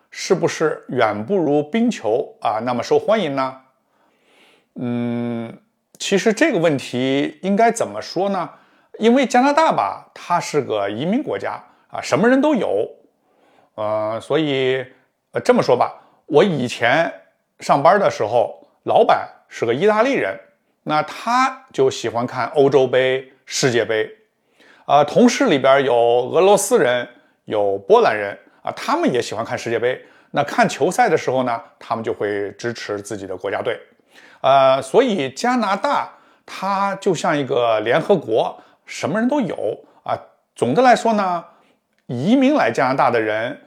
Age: 60-79